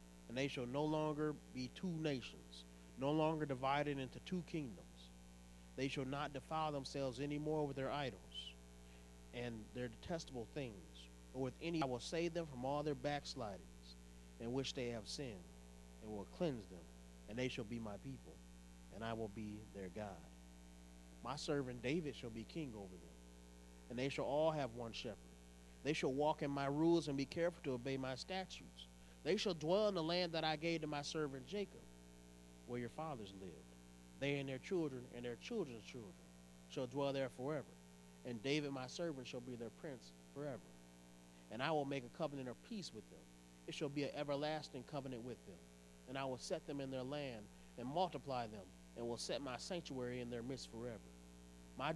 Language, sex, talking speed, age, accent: English, male, 190 wpm, 30-49, American